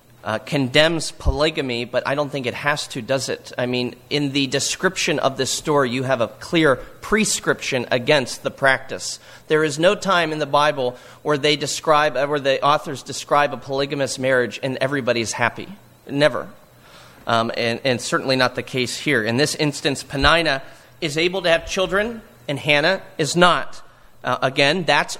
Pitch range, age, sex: 130-160 Hz, 40-59, male